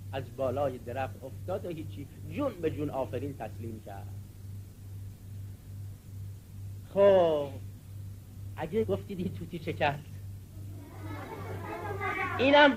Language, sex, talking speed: Persian, male, 95 wpm